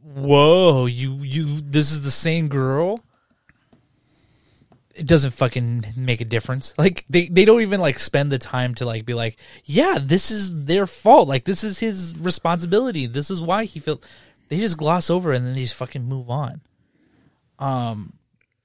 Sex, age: male, 20-39